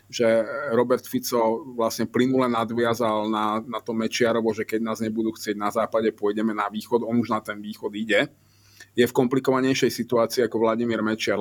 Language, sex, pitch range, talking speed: Slovak, male, 110-125 Hz, 175 wpm